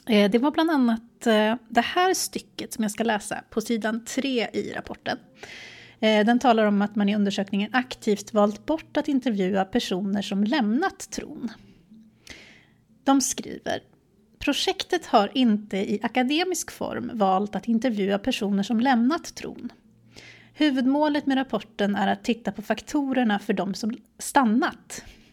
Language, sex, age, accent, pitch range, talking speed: Swedish, female, 30-49, native, 210-255 Hz, 140 wpm